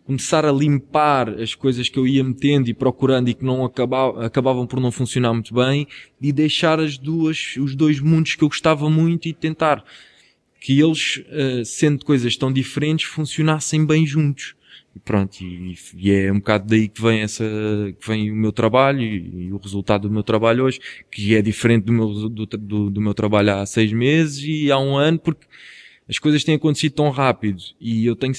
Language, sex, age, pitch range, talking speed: Portuguese, male, 20-39, 115-140 Hz, 195 wpm